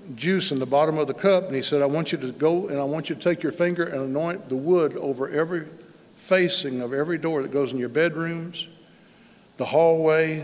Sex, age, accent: male, 60-79, American